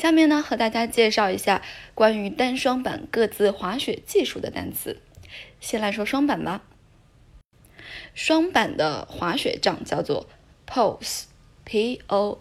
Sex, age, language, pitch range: female, 10-29, Chinese, 190-245 Hz